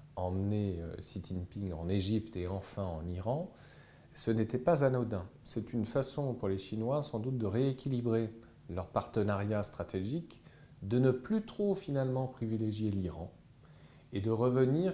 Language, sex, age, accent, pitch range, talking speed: French, male, 40-59, French, 100-135 Hz, 145 wpm